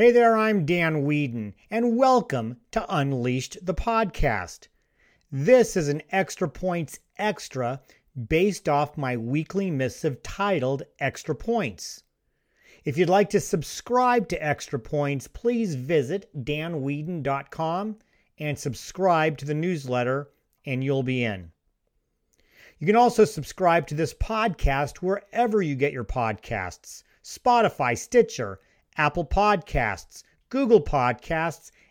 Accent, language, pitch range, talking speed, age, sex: American, English, 125-180 Hz, 120 wpm, 40-59, male